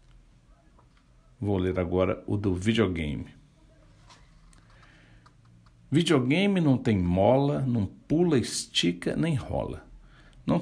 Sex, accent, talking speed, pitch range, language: male, Brazilian, 90 wpm, 95-130 Hz, Portuguese